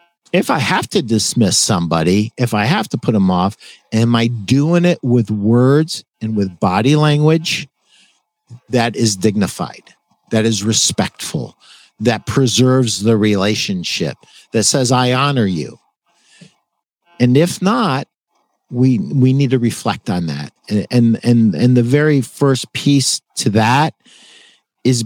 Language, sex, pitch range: English, male, 110-155 Hz